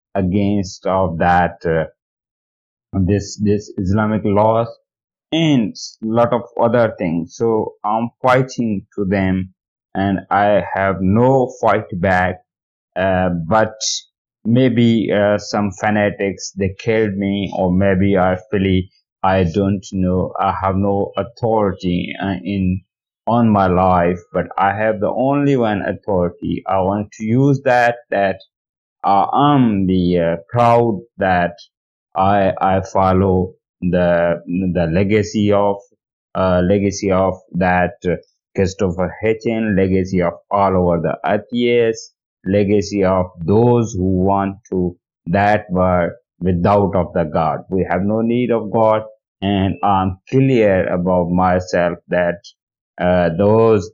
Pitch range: 90-110 Hz